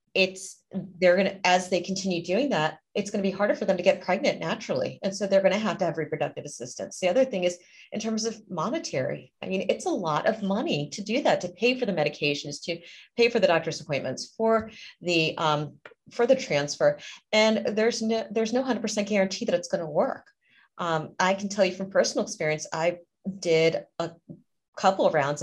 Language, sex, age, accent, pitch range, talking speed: English, female, 30-49, American, 150-200 Hz, 205 wpm